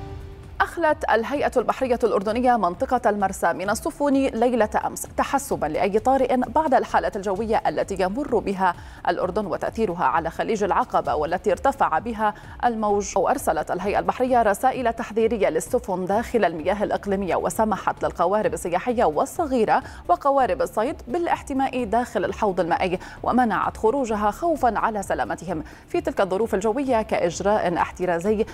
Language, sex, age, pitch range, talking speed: Arabic, female, 30-49, 195-255 Hz, 120 wpm